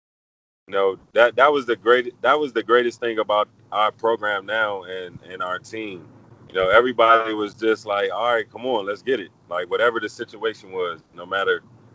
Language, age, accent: English, 30-49, American